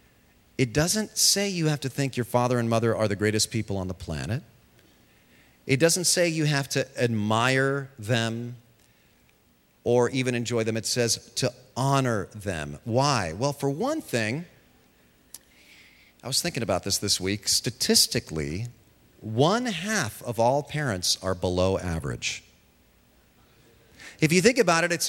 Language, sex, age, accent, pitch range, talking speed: English, male, 40-59, American, 100-140 Hz, 150 wpm